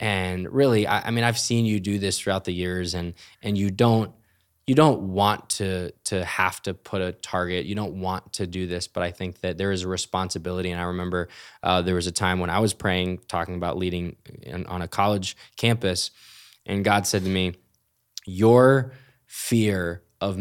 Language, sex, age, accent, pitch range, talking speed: English, male, 20-39, American, 90-105 Hz, 205 wpm